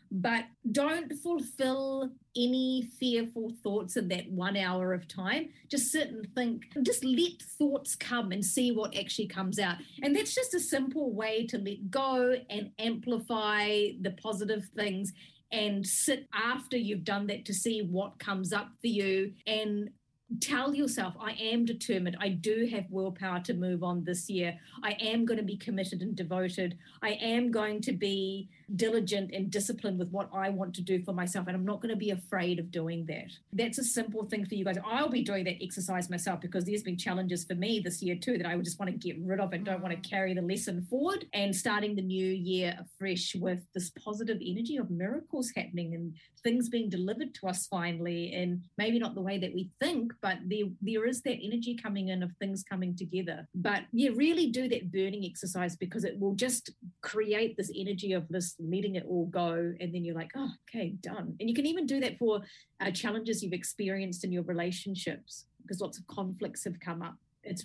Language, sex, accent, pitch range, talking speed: English, female, Australian, 185-230 Hz, 205 wpm